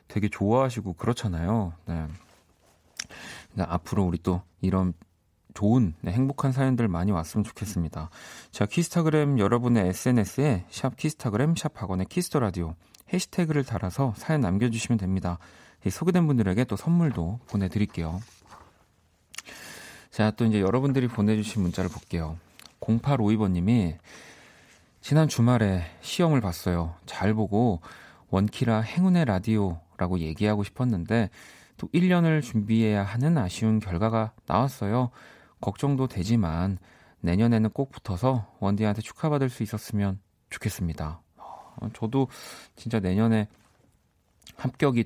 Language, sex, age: Korean, male, 40-59